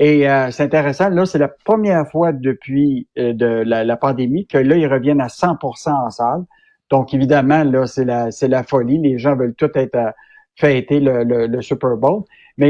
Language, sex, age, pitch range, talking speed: French, male, 60-79, 135-175 Hz, 210 wpm